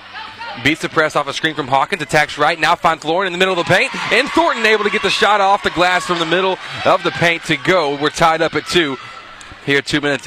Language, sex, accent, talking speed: English, male, American, 265 wpm